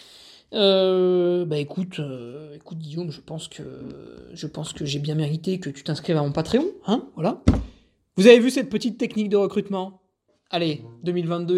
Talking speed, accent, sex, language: 170 wpm, French, male, French